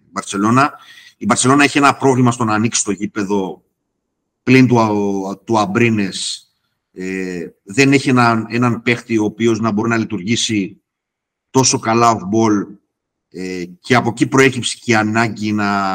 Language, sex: Greek, male